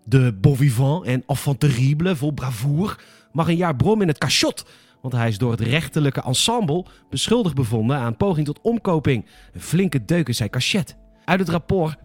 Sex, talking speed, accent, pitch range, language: male, 175 wpm, Dutch, 125-170 Hz, Dutch